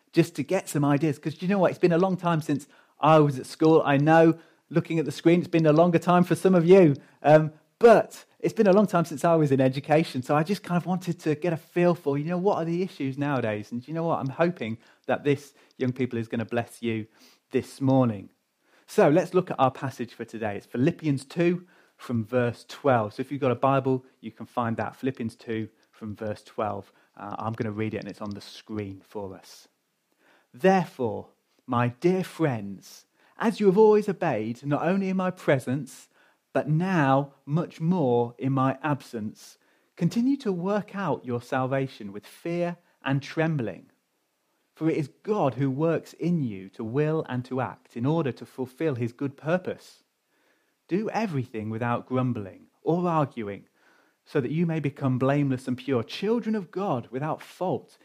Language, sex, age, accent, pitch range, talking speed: English, male, 30-49, British, 125-170 Hz, 200 wpm